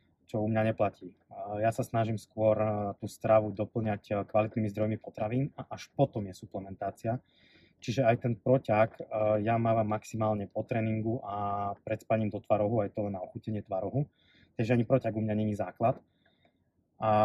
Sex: male